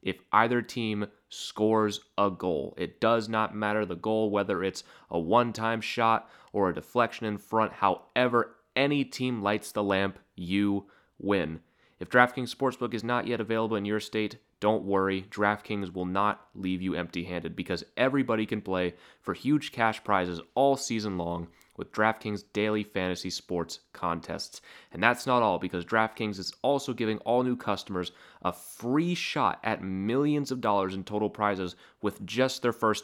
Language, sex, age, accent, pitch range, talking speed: English, male, 30-49, American, 95-115 Hz, 165 wpm